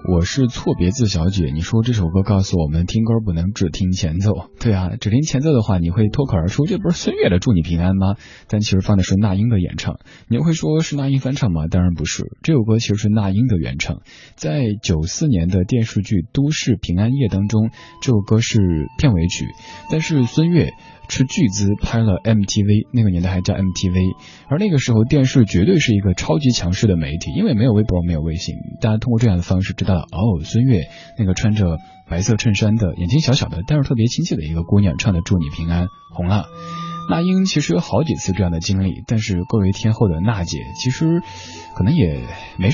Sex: male